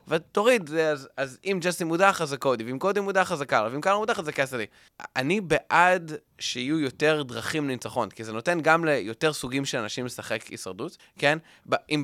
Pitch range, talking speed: 120-175 Hz, 175 wpm